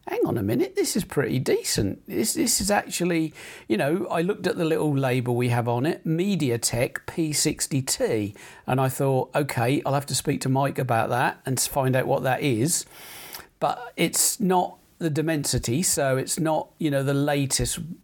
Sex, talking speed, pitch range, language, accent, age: male, 185 wpm, 125-155 Hz, English, British, 50-69